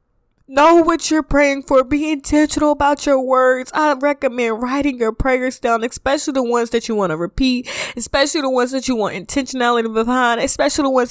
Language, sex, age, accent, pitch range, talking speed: English, female, 20-39, American, 255-285 Hz, 190 wpm